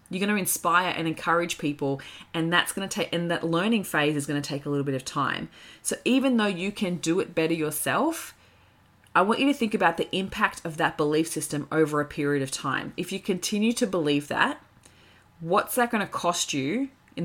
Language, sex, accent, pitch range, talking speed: English, female, Australian, 145-185 Hz, 210 wpm